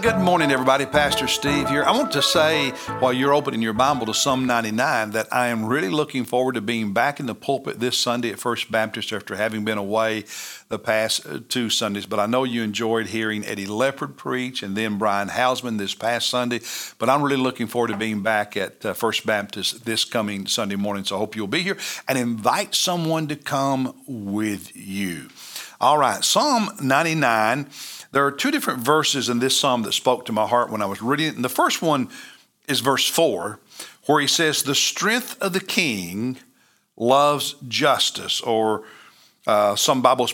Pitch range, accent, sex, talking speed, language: 110-135 Hz, American, male, 195 wpm, English